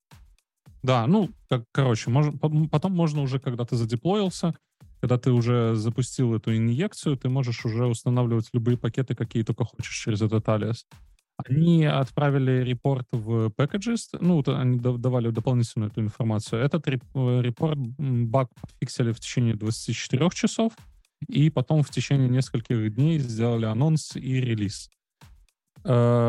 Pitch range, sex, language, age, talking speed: 120-150 Hz, male, Russian, 20-39, 135 wpm